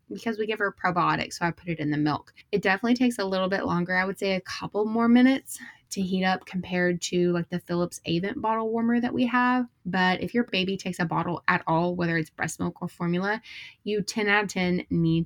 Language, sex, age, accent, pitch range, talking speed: English, female, 20-39, American, 175-210 Hz, 240 wpm